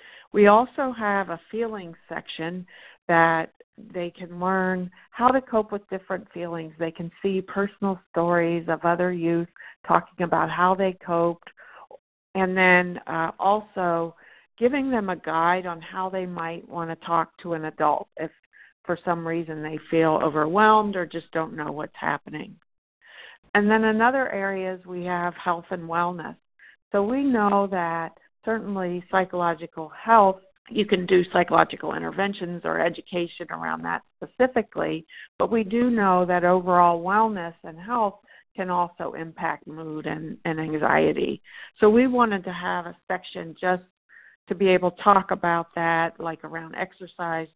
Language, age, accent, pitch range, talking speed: English, 50-69, American, 170-200 Hz, 155 wpm